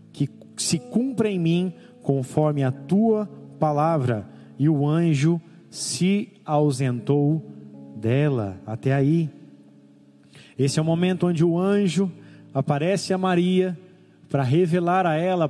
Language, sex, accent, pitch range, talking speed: Portuguese, male, Brazilian, 150-185 Hz, 115 wpm